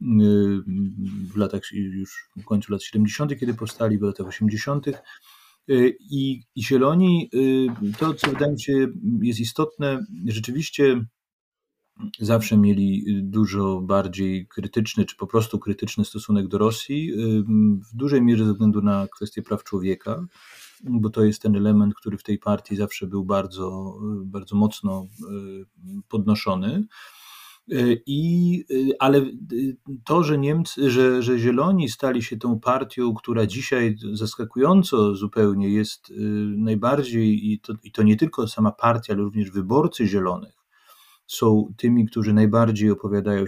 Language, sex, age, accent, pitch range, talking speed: Polish, male, 30-49, native, 100-125 Hz, 130 wpm